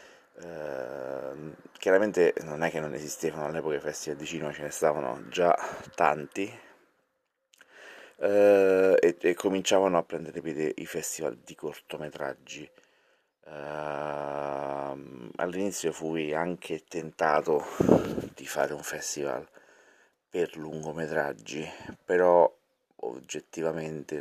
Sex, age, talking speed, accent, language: male, 30-49, 100 wpm, native, Italian